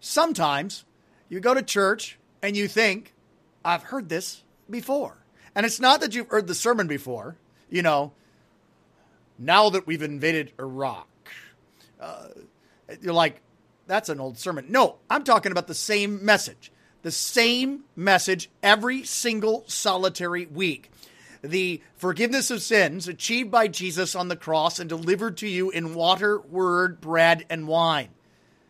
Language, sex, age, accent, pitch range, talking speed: English, male, 40-59, American, 170-230 Hz, 145 wpm